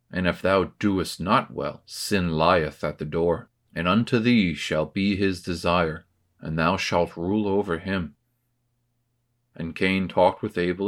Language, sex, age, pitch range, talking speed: English, male, 40-59, 85-110 Hz, 160 wpm